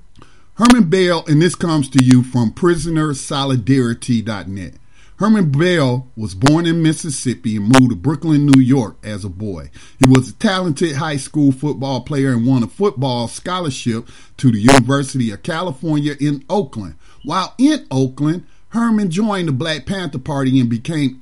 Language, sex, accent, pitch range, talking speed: English, male, American, 125-165 Hz, 155 wpm